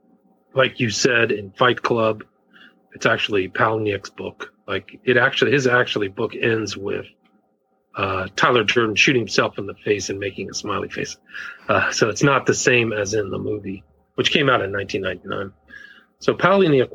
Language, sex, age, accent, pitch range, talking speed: English, male, 40-59, American, 105-130 Hz, 165 wpm